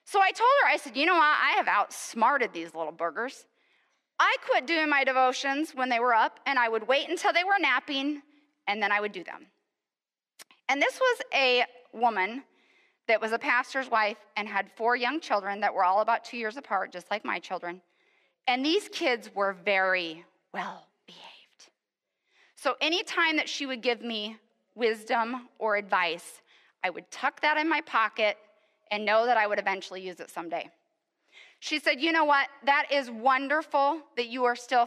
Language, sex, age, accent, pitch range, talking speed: English, female, 20-39, American, 210-295 Hz, 190 wpm